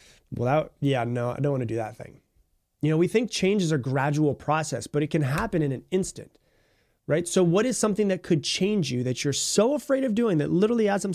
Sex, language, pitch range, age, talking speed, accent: male, English, 140-195 Hz, 30-49, 240 wpm, American